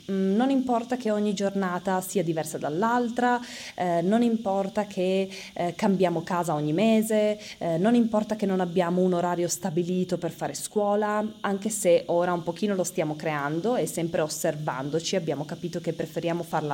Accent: native